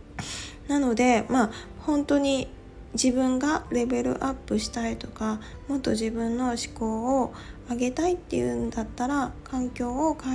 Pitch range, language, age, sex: 205-260 Hz, Japanese, 20-39, female